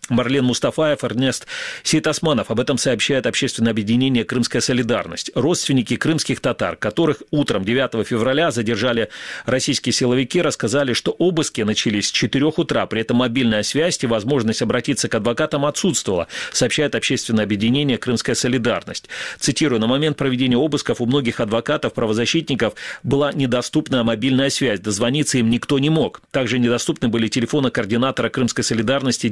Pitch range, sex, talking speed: 115-140 Hz, male, 140 wpm